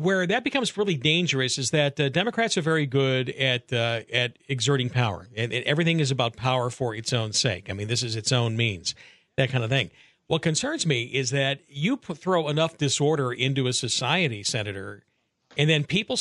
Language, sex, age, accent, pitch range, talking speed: English, male, 50-69, American, 130-180 Hz, 205 wpm